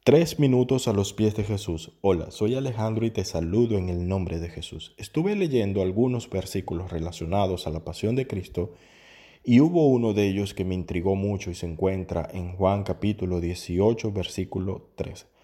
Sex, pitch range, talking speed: male, 90-110 Hz, 180 wpm